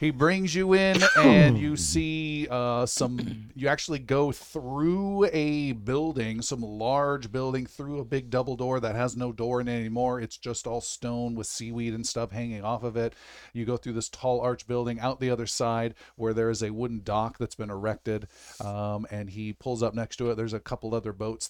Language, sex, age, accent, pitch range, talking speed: English, male, 40-59, American, 105-130 Hz, 210 wpm